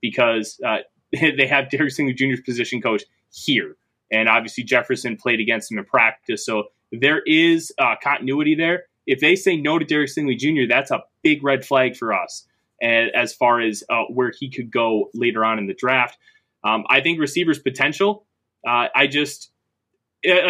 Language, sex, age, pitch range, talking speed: English, male, 20-39, 120-155 Hz, 180 wpm